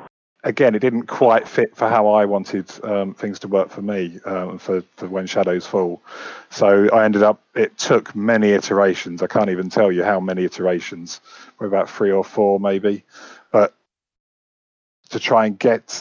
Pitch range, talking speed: 90-105 Hz, 180 wpm